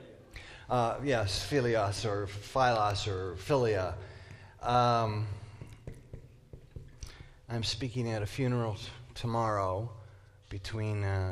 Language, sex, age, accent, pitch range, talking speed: English, male, 40-59, American, 100-120 Hz, 85 wpm